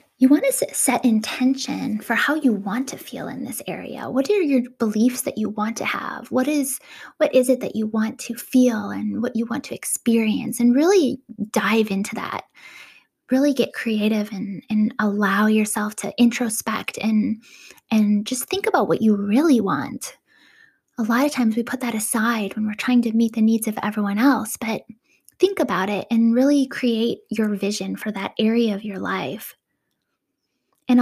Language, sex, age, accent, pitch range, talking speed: English, female, 10-29, American, 220-260 Hz, 185 wpm